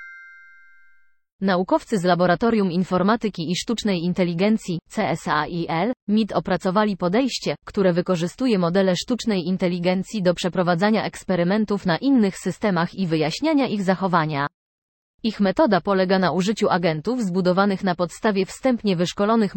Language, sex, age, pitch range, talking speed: Polish, female, 20-39, 175-210 Hz, 115 wpm